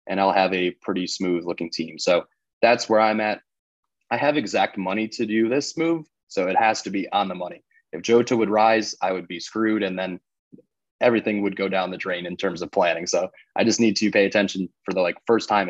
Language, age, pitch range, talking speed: English, 20-39, 95-105 Hz, 235 wpm